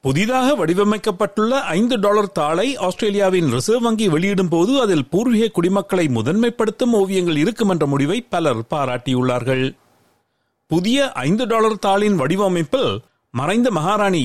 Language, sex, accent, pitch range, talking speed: Tamil, male, native, 145-215 Hz, 115 wpm